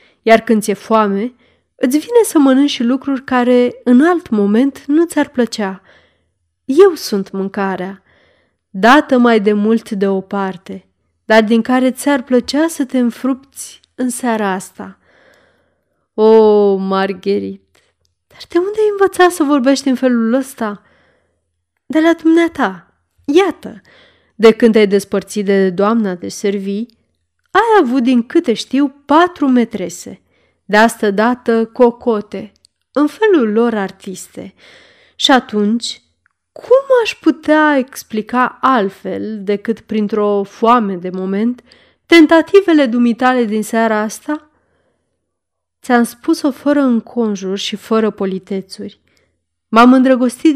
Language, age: Romanian, 20-39